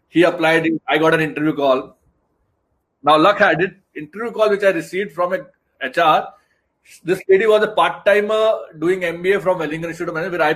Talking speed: 180 wpm